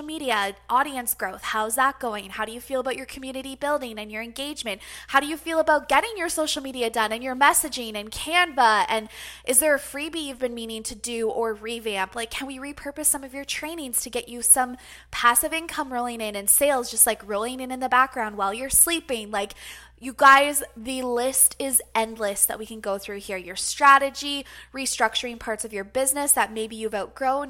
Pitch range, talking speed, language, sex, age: 220-275 Hz, 210 wpm, English, female, 20-39